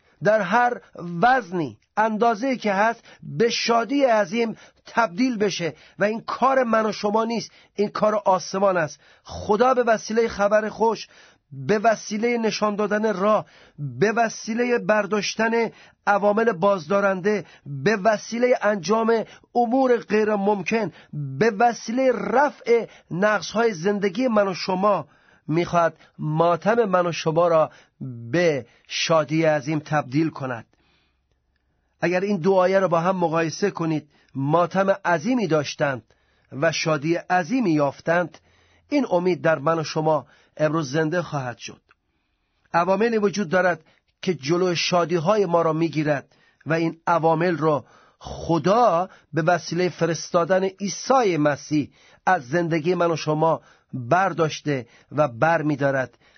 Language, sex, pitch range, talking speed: Persian, male, 155-215 Hz, 120 wpm